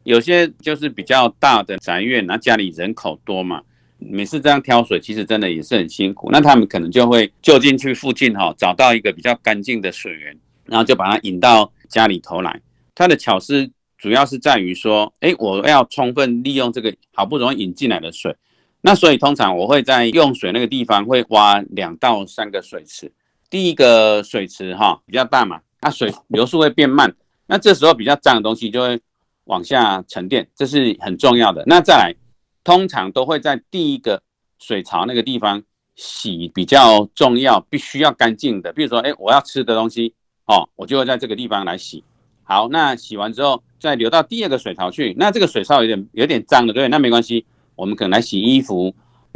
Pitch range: 105-140 Hz